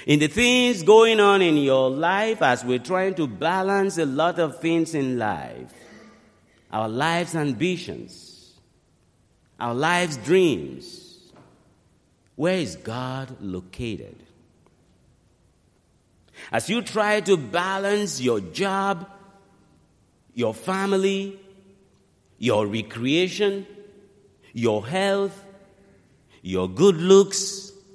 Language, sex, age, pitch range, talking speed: English, male, 50-69, 120-195 Hz, 95 wpm